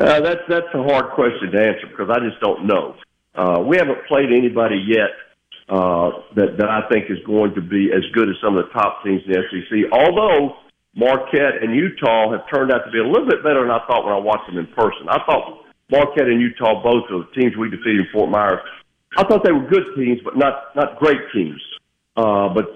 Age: 50-69